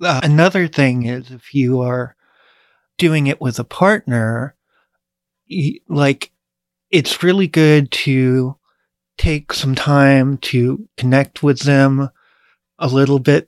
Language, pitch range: English, 125-145 Hz